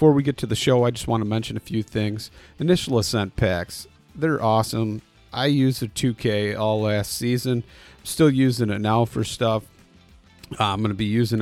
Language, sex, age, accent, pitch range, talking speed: English, male, 40-59, American, 105-125 Hz, 195 wpm